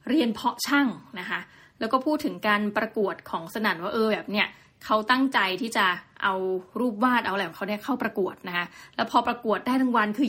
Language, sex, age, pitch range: Thai, female, 20-39, 210-275 Hz